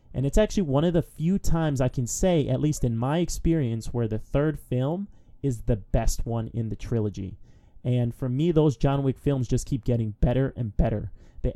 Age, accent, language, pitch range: 30-49, American, English, 120-150 Hz